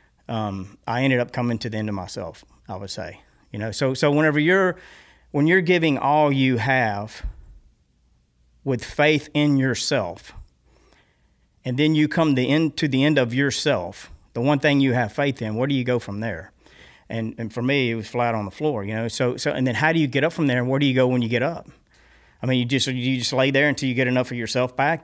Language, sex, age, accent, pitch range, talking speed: English, male, 40-59, American, 105-130 Hz, 240 wpm